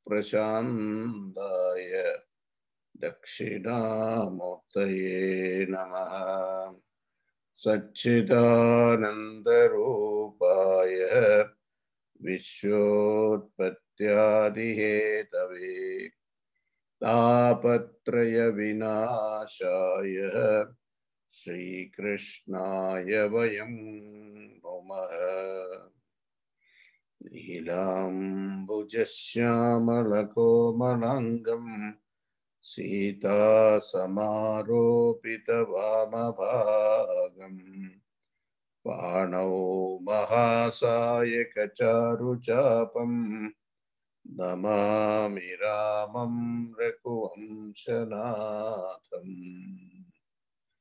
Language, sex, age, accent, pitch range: English, male, 60-79, Indian, 100-120 Hz